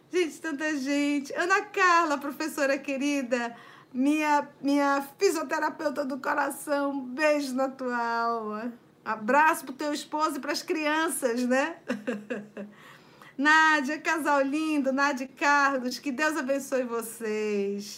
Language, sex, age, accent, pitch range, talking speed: Portuguese, female, 50-69, Brazilian, 230-300 Hz, 125 wpm